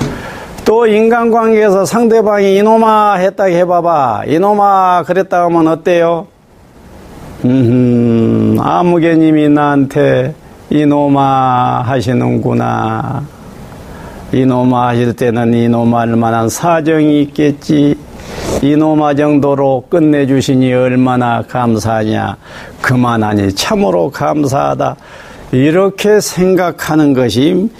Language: Korean